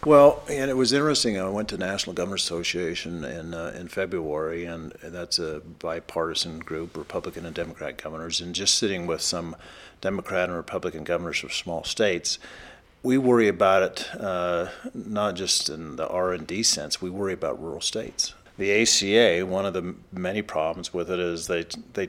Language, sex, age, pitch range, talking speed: English, male, 50-69, 85-100 Hz, 175 wpm